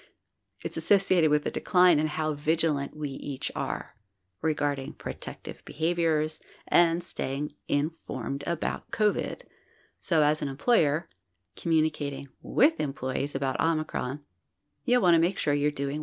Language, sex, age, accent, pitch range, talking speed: English, female, 40-59, American, 135-165 Hz, 130 wpm